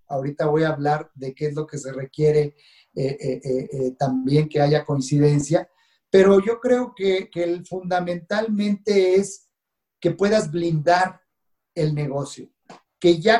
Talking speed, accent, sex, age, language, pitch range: 150 wpm, Mexican, male, 40-59, Spanish, 145-175 Hz